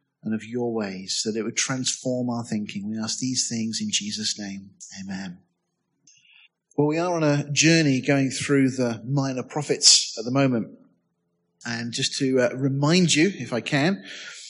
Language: English